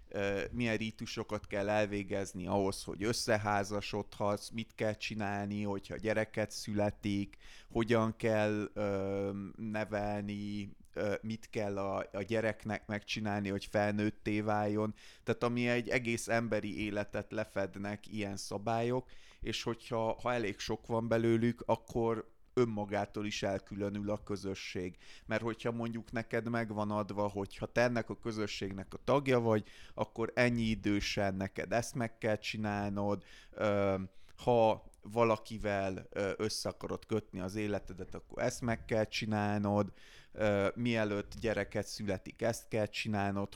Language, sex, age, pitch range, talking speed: Hungarian, male, 30-49, 100-115 Hz, 115 wpm